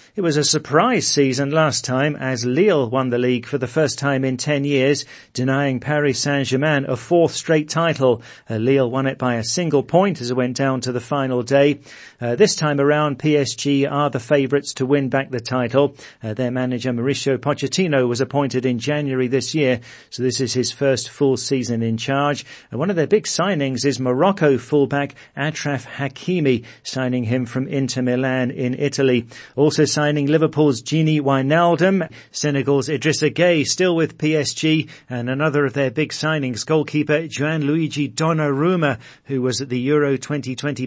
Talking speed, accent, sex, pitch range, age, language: 175 wpm, British, male, 130-150 Hz, 40-59, English